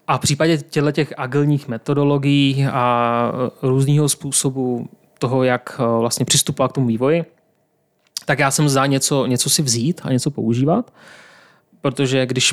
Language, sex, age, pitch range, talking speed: Czech, male, 30-49, 125-145 Hz, 145 wpm